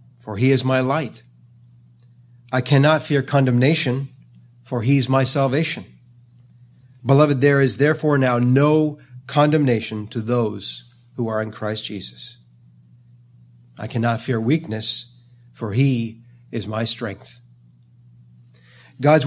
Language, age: English, 40-59